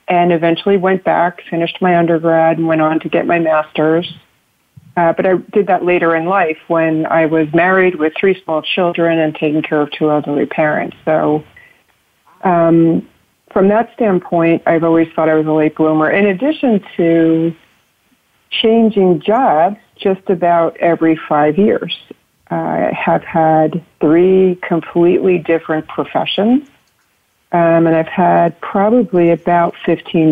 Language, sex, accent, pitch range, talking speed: English, female, American, 160-185 Hz, 145 wpm